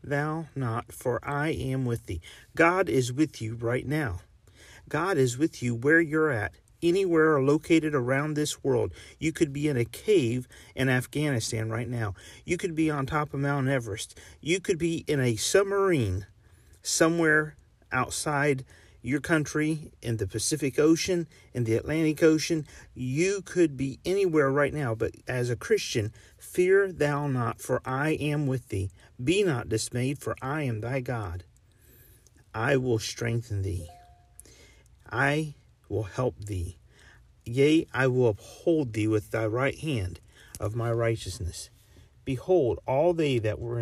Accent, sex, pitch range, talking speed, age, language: American, male, 110-155 Hz, 155 wpm, 40-59, English